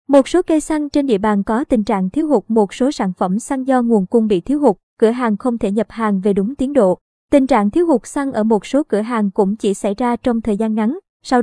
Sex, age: male, 20-39